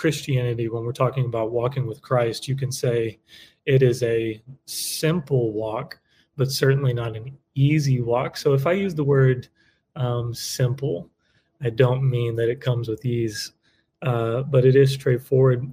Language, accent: English, American